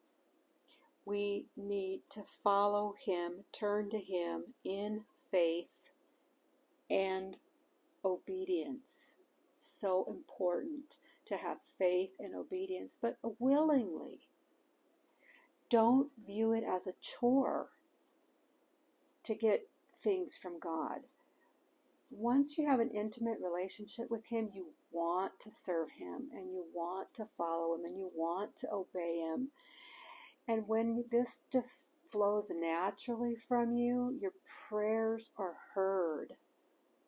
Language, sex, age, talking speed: English, female, 50-69, 110 wpm